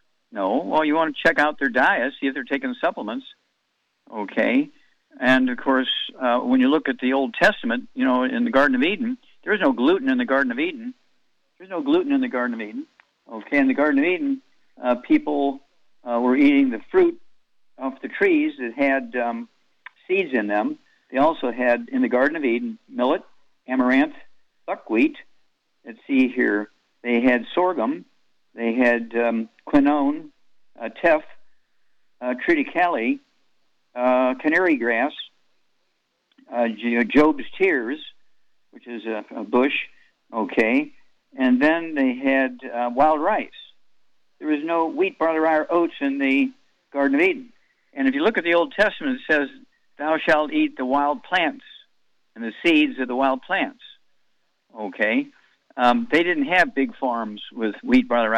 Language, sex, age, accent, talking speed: English, male, 60-79, American, 165 wpm